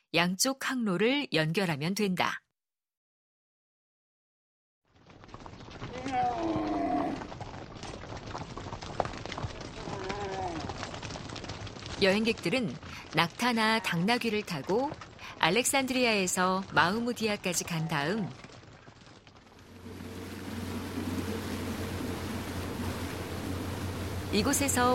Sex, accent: female, native